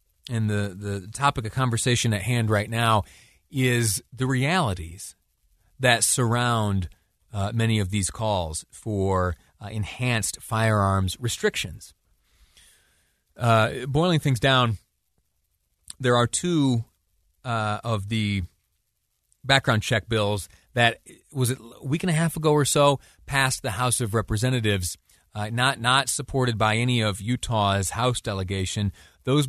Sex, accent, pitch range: male, American, 100-125 Hz